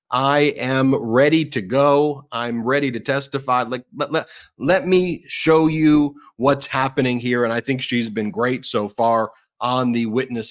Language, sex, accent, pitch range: English, male, American, 115-135 Hz